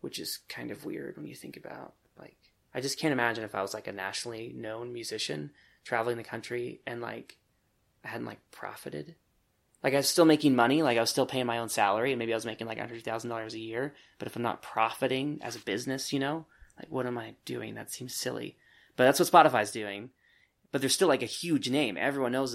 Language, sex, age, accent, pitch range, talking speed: English, male, 20-39, American, 110-140 Hz, 230 wpm